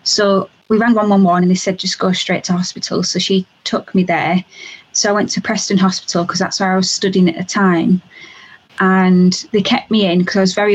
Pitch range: 185-210 Hz